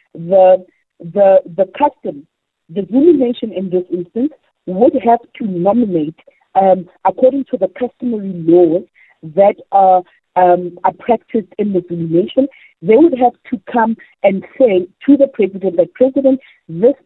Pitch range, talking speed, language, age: 185-245 Hz, 140 wpm, English, 50-69